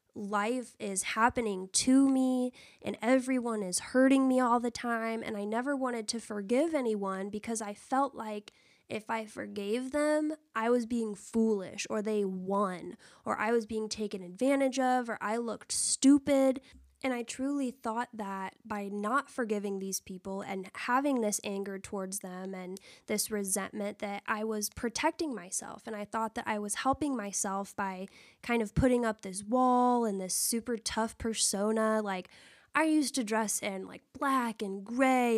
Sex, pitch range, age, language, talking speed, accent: female, 210-260 Hz, 10-29, English, 170 wpm, American